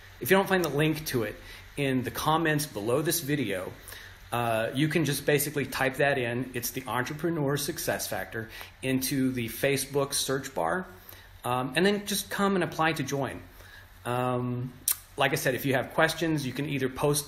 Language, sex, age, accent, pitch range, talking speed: English, male, 30-49, American, 110-140 Hz, 185 wpm